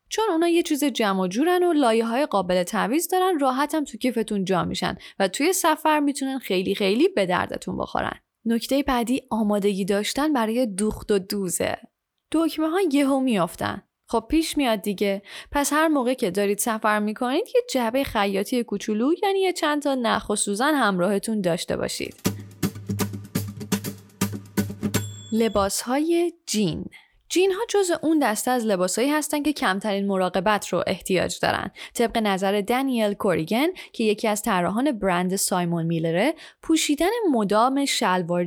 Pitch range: 195-300 Hz